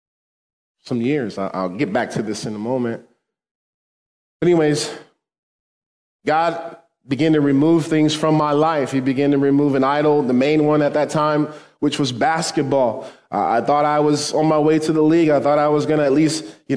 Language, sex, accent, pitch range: English, male, American, 135-155 Hz